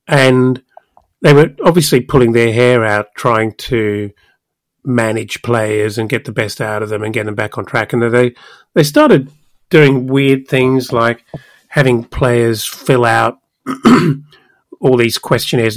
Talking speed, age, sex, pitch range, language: 150 wpm, 40-59, male, 120-145 Hz, English